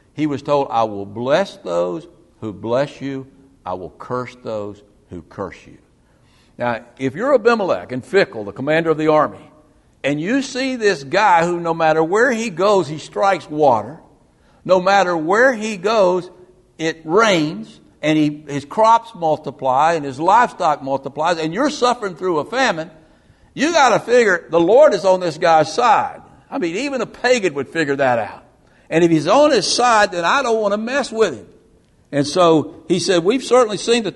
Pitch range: 135-200 Hz